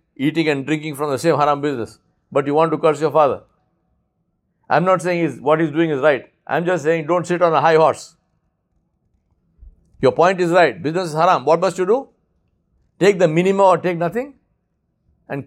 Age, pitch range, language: 60-79, 155-185 Hz, English